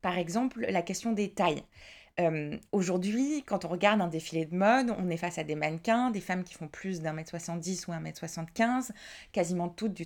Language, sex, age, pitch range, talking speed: French, female, 20-39, 175-215 Hz, 215 wpm